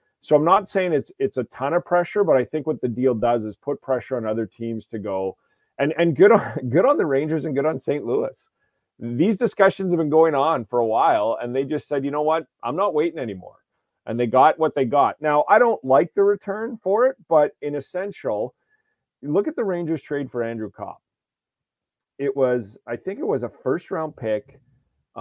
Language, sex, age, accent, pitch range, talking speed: English, male, 40-59, American, 115-155 Hz, 220 wpm